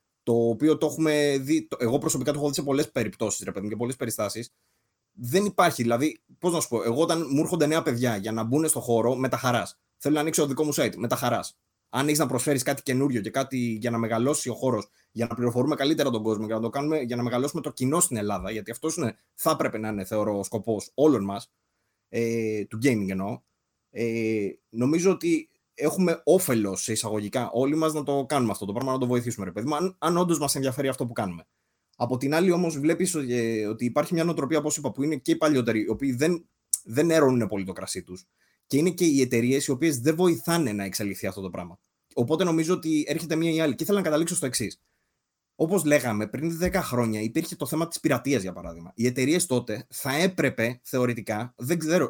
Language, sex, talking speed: Greek, male, 220 wpm